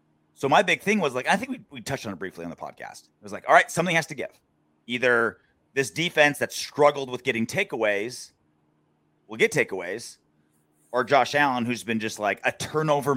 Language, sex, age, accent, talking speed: English, male, 30-49, American, 210 wpm